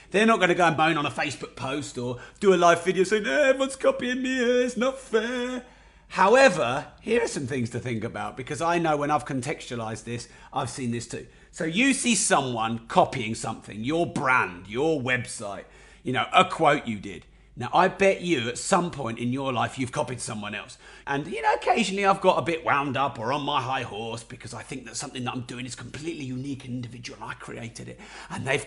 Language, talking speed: English, 220 wpm